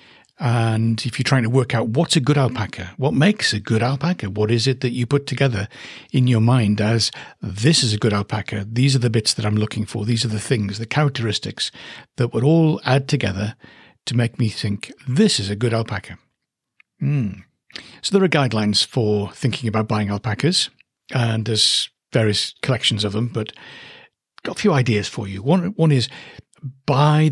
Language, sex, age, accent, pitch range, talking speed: English, male, 60-79, British, 110-140 Hz, 195 wpm